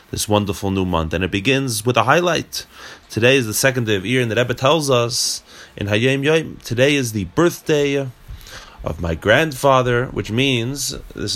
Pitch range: 105-135 Hz